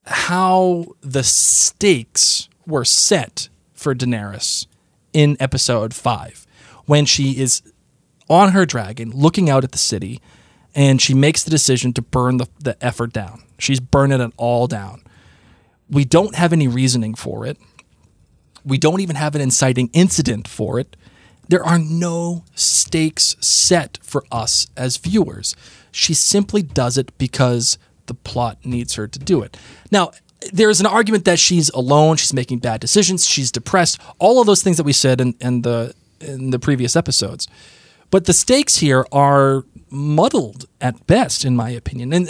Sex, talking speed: male, 160 wpm